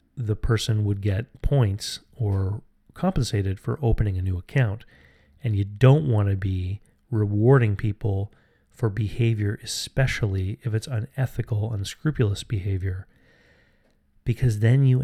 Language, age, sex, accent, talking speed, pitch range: English, 30-49, male, American, 125 wpm, 100-120 Hz